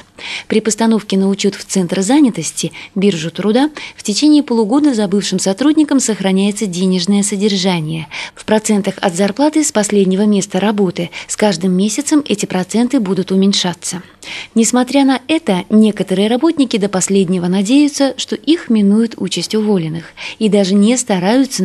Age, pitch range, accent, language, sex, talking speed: 20-39, 185-240 Hz, native, Russian, female, 135 wpm